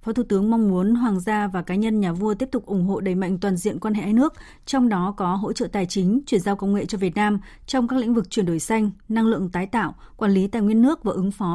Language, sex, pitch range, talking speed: Vietnamese, female, 195-235 Hz, 290 wpm